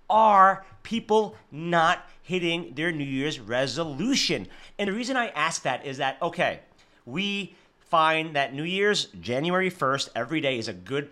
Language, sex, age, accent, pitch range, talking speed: English, male, 30-49, American, 135-185 Hz, 155 wpm